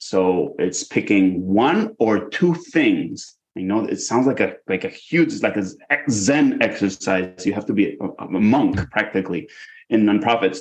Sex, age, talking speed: male, 30-49, 180 wpm